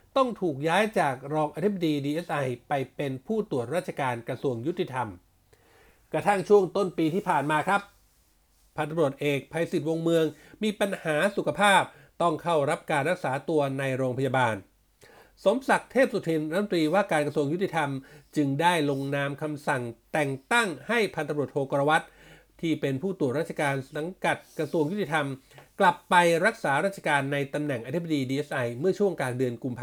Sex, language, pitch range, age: male, Thai, 140-180 Hz, 60-79